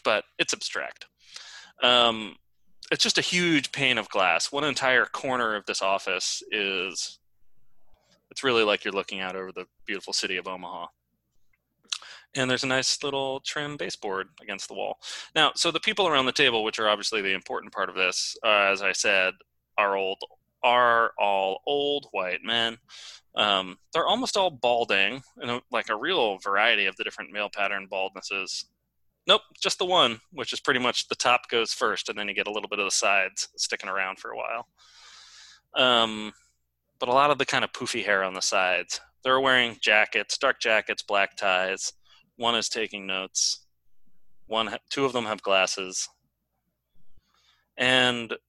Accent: American